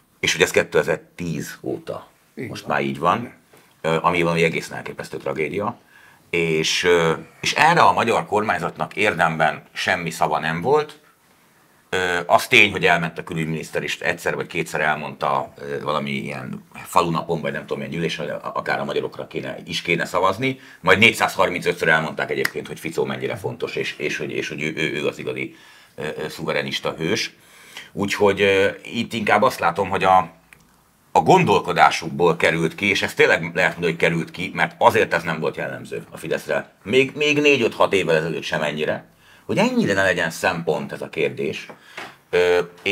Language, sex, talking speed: Hungarian, male, 160 wpm